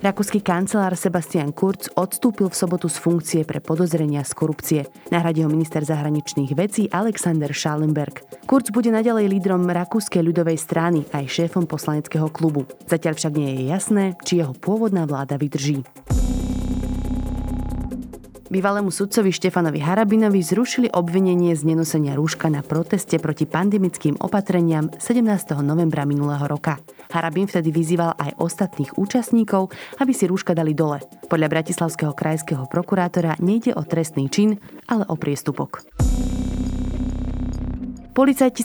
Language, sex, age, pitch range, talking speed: Slovak, female, 30-49, 150-190 Hz, 125 wpm